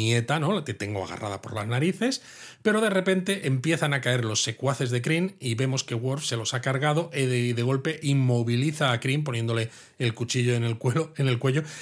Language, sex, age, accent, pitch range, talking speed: Spanish, male, 30-49, Spanish, 115-150 Hz, 225 wpm